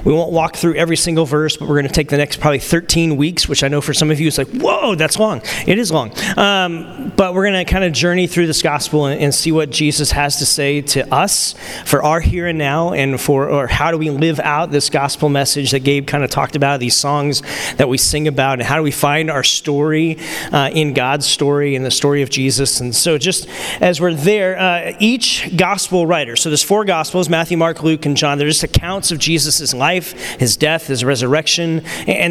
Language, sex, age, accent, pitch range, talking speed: English, male, 40-59, American, 145-175 Hz, 235 wpm